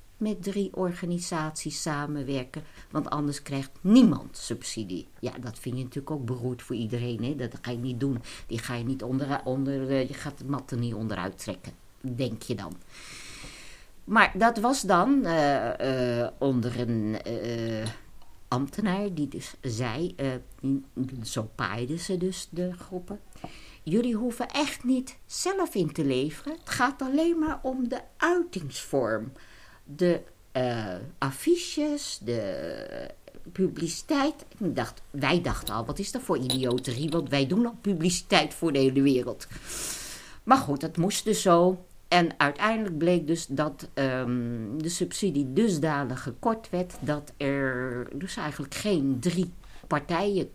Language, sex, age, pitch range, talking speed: Dutch, female, 50-69, 130-185 Hz, 145 wpm